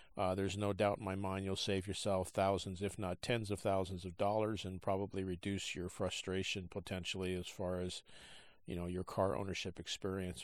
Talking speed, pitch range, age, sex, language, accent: 190 wpm, 95-125 Hz, 50-69, male, English, American